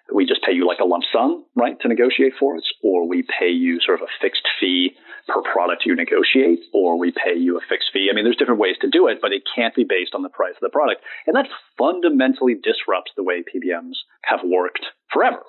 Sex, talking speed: male, 240 wpm